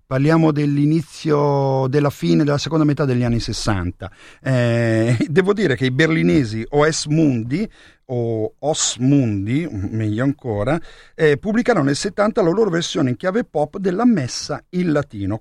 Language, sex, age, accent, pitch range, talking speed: Italian, male, 50-69, native, 110-150 Hz, 145 wpm